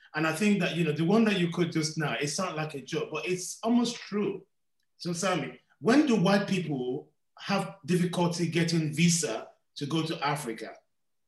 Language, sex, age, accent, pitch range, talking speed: English, male, 30-49, Nigerian, 135-185 Hz, 195 wpm